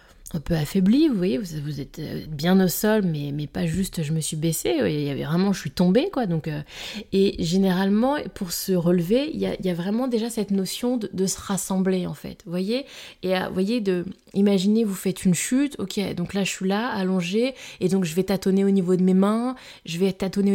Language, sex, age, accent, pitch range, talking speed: French, female, 20-39, French, 180-215 Hz, 230 wpm